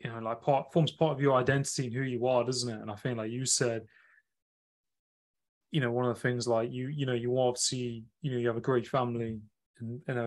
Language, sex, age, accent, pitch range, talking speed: English, male, 20-39, British, 110-125 Hz, 255 wpm